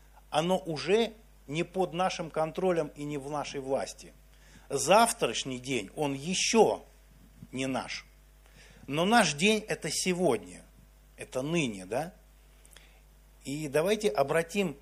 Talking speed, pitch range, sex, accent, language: 115 wpm, 140-190 Hz, male, native, Russian